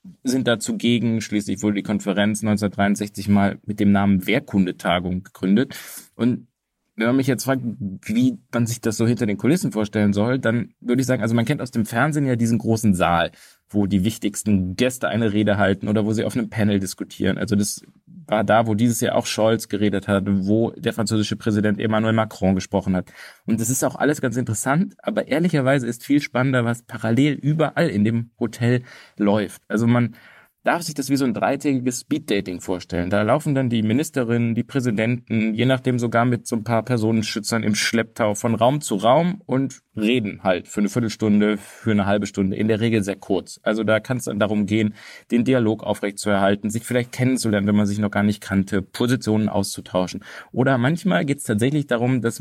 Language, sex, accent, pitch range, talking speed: German, male, German, 105-125 Hz, 200 wpm